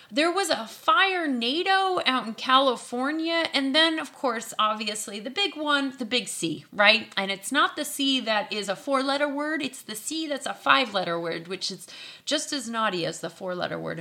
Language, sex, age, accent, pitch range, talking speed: English, female, 30-49, American, 205-300 Hz, 210 wpm